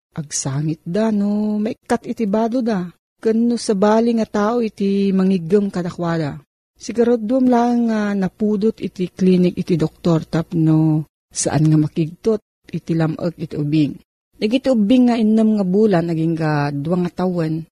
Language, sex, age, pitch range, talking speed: Filipino, female, 40-59, 170-215 Hz, 145 wpm